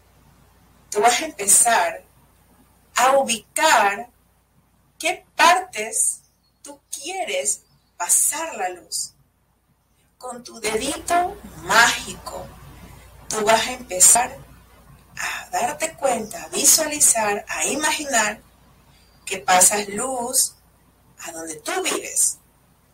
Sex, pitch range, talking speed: female, 200-310 Hz, 90 wpm